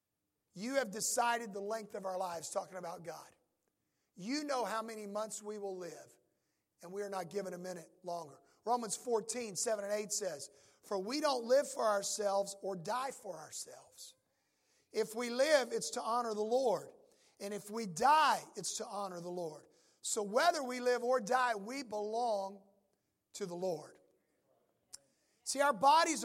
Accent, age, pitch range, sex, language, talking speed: American, 50-69, 200-245 Hz, male, English, 170 wpm